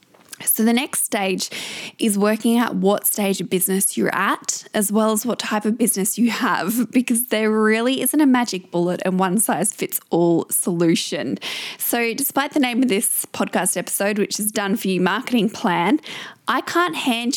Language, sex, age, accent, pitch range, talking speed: English, female, 20-39, Australian, 190-240 Hz, 185 wpm